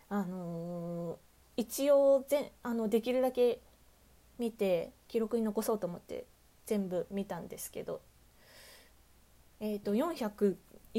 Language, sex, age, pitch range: Japanese, female, 20-39, 185-235 Hz